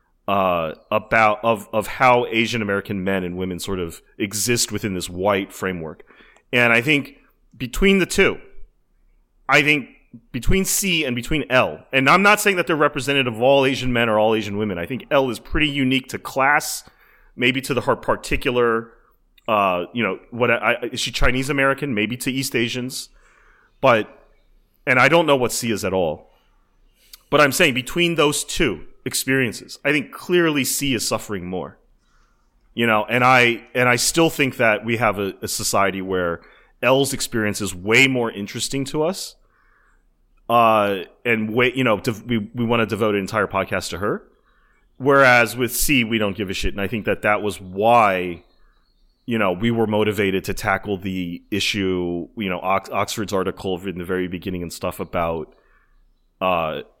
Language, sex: English, male